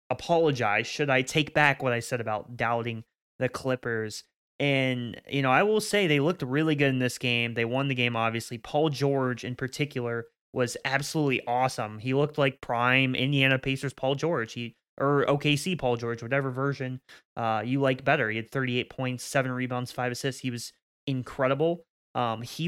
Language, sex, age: English, male, 20-39